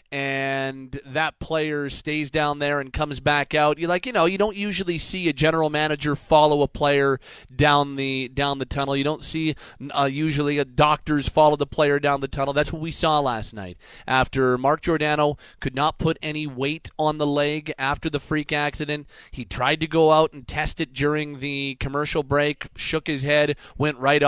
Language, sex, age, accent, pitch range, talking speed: English, male, 30-49, American, 130-150 Hz, 210 wpm